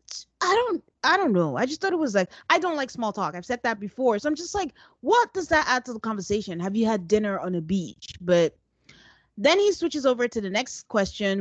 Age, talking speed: 30-49, 245 wpm